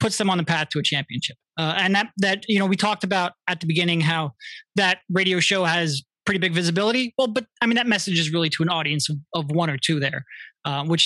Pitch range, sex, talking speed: 165-210 Hz, male, 255 wpm